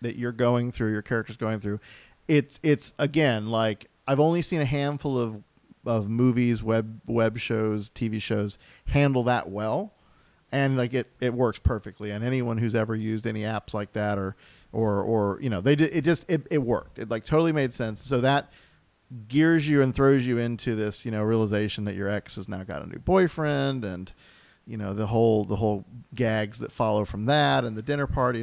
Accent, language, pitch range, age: American, English, 110-135 Hz, 40-59